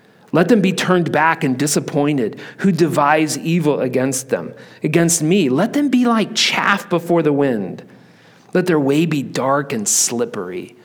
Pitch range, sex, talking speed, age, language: 135-195 Hz, male, 160 wpm, 40-59, English